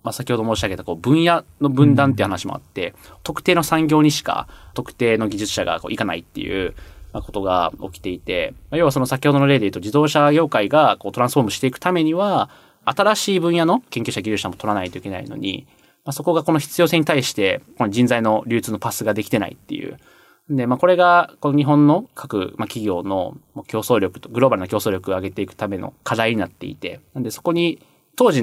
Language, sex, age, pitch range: Japanese, male, 20-39, 105-150 Hz